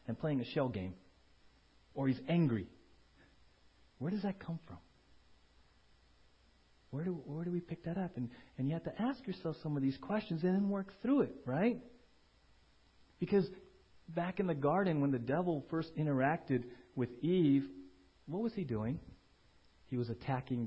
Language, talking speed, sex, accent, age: English, 165 wpm, male, American, 40-59